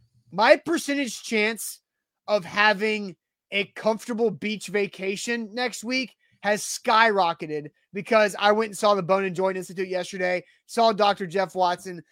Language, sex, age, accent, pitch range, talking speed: English, male, 30-49, American, 185-220 Hz, 140 wpm